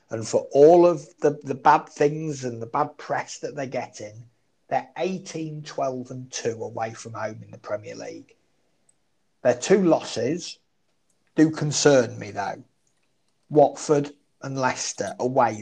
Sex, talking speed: male, 145 wpm